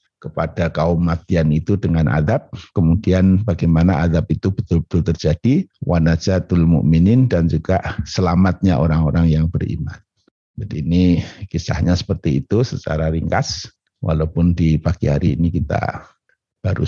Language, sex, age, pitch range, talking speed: Indonesian, male, 50-69, 80-105 Hz, 120 wpm